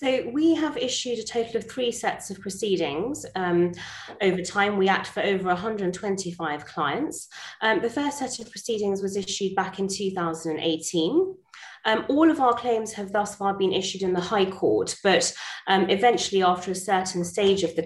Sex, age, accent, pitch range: female, 20-39, British, 170-215 Hz